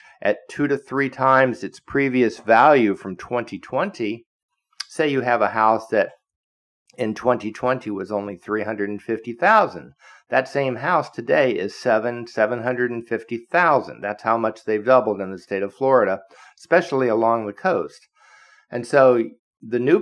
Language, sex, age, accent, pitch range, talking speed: English, male, 50-69, American, 105-130 Hz, 140 wpm